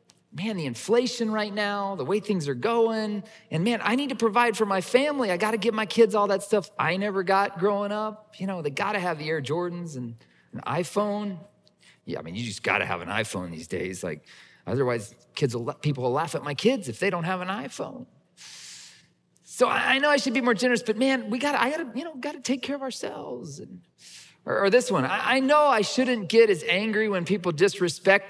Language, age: English, 40-59